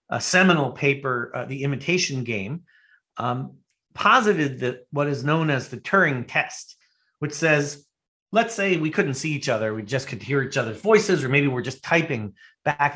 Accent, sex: American, male